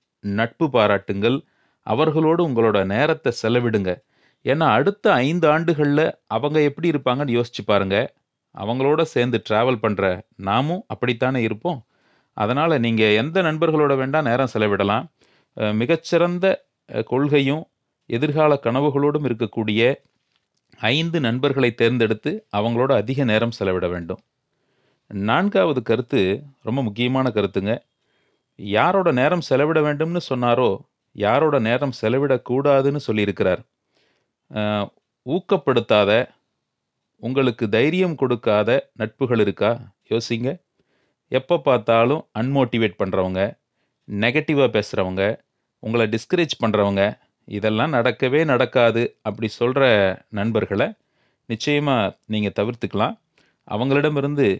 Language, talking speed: Tamil, 90 wpm